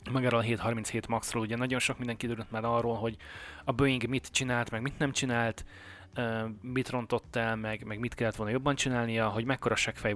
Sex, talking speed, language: male, 200 wpm, Hungarian